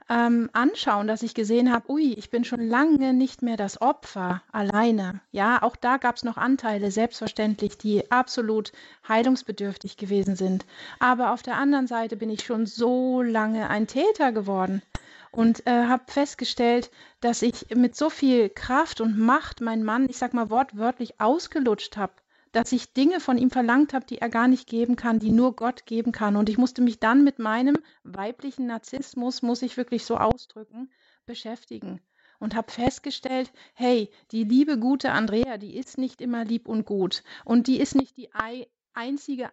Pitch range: 220-260 Hz